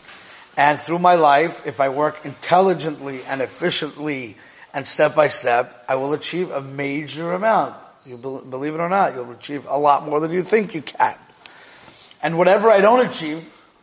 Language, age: English, 30-49